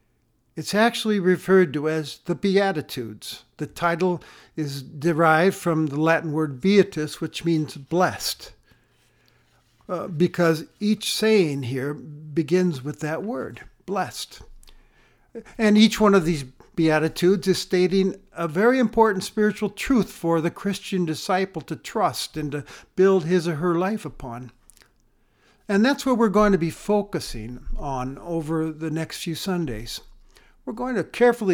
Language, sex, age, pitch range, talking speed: English, male, 60-79, 150-195 Hz, 140 wpm